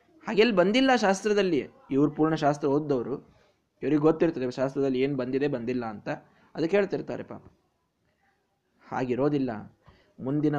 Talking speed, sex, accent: 100 wpm, male, native